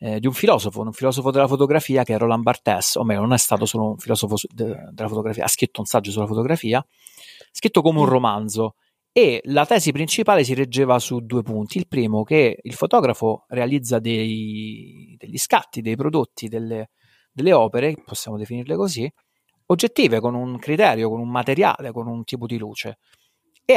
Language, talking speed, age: Italian, 175 wpm, 40-59